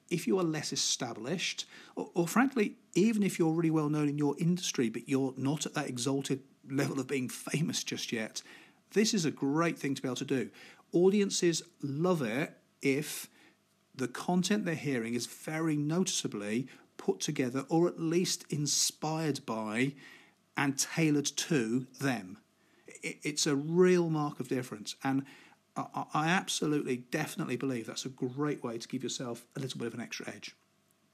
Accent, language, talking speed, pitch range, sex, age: British, English, 165 wpm, 135-170 Hz, male, 40-59